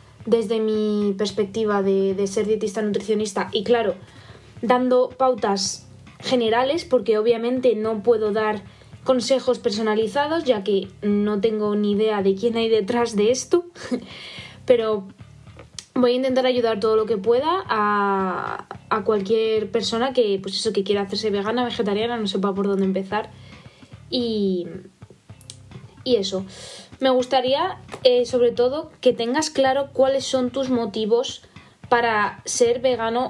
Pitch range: 205-255 Hz